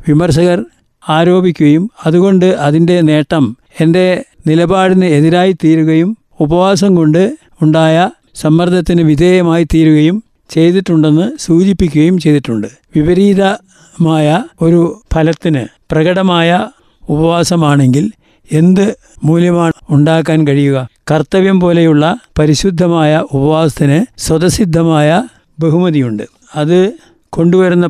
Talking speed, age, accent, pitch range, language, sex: 70 wpm, 60-79, native, 155-185 Hz, Malayalam, male